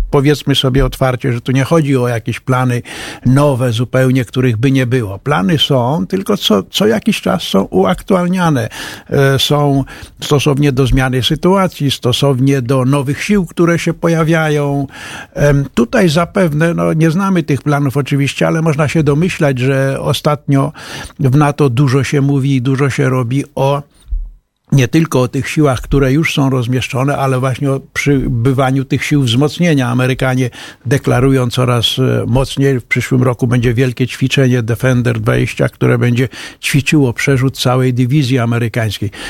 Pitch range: 130-165 Hz